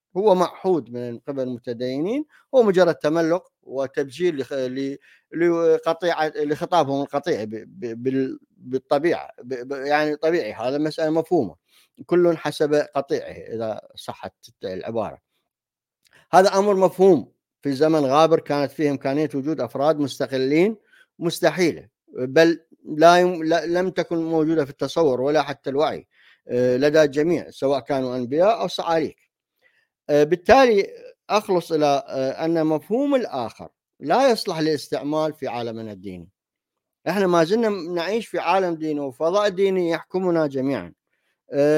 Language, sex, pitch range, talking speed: Arabic, male, 140-185 Hz, 120 wpm